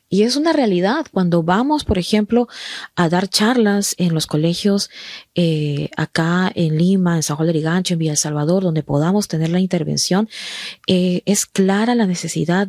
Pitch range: 170-220 Hz